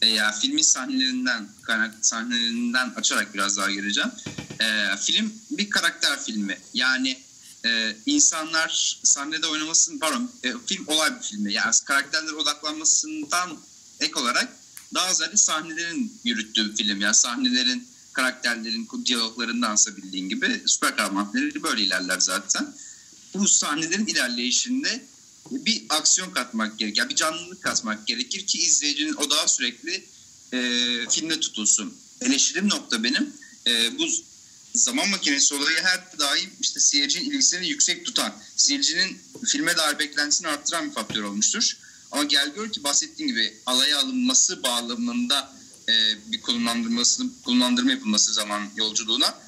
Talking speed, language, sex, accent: 125 wpm, Turkish, male, native